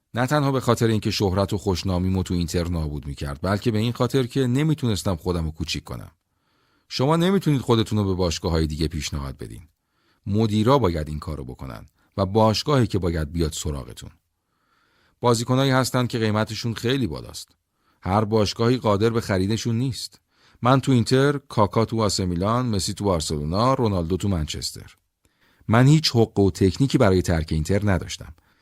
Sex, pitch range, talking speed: male, 90-120 Hz, 160 wpm